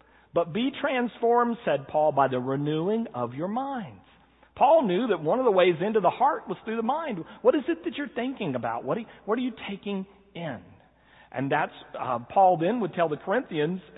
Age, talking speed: 40-59, 200 wpm